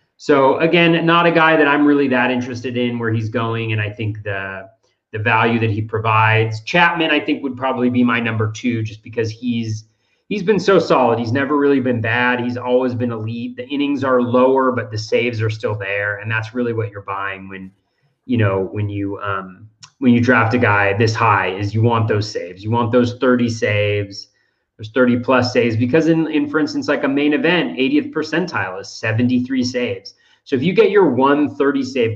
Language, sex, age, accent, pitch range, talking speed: English, male, 30-49, American, 110-135 Hz, 210 wpm